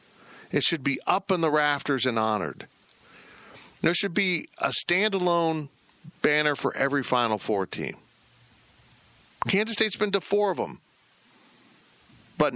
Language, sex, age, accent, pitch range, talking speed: English, male, 50-69, American, 110-160 Hz, 135 wpm